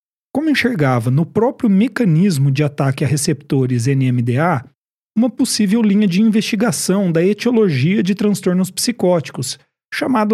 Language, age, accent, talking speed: Portuguese, 40-59, Brazilian, 120 wpm